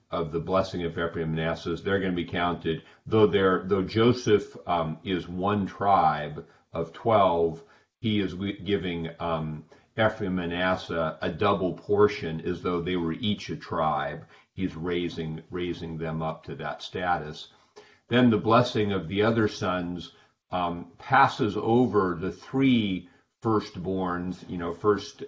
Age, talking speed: 40-59, 150 wpm